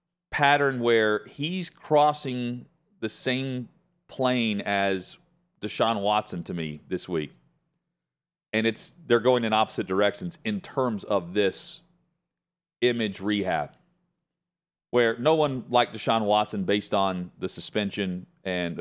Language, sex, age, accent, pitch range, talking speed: English, male, 40-59, American, 100-140 Hz, 120 wpm